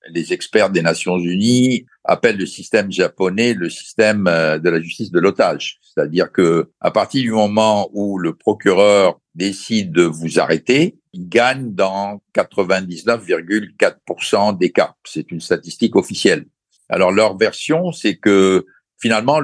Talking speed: 140 wpm